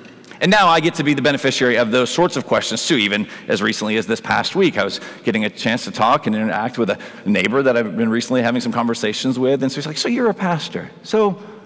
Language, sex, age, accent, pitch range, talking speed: English, male, 40-59, American, 125-155 Hz, 255 wpm